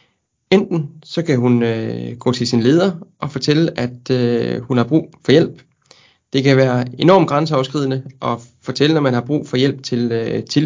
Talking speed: 190 wpm